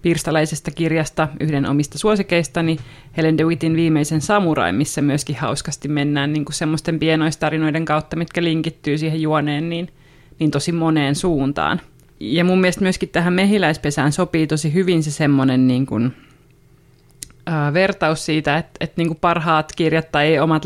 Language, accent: Finnish, native